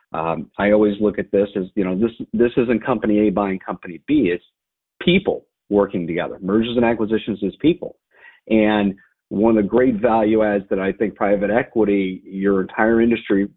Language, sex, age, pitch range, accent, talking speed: English, male, 40-59, 100-115 Hz, American, 180 wpm